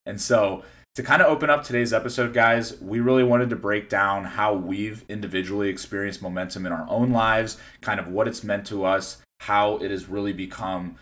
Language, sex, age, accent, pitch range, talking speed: English, male, 20-39, American, 95-120 Hz, 200 wpm